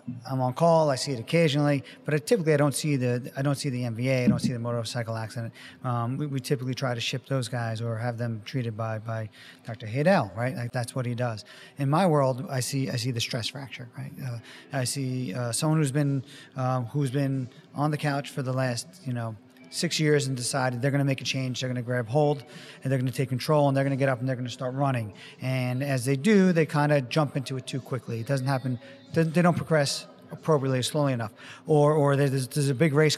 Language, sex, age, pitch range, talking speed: English, male, 30-49, 125-150 Hz, 250 wpm